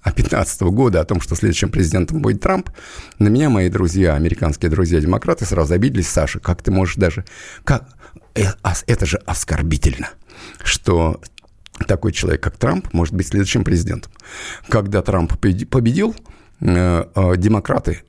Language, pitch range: Russian, 85-105 Hz